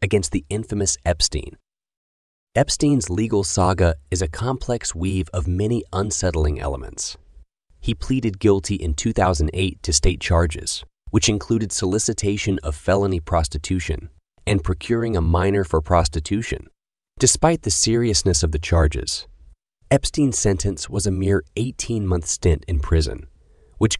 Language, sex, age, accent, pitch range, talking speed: English, male, 30-49, American, 80-105 Hz, 130 wpm